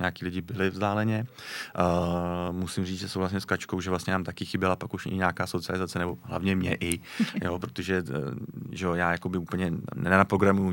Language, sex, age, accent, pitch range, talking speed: Czech, male, 30-49, native, 85-95 Hz, 195 wpm